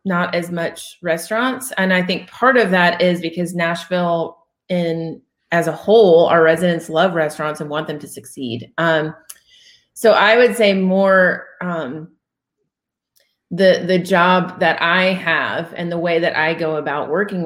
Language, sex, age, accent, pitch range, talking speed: English, female, 30-49, American, 160-190 Hz, 160 wpm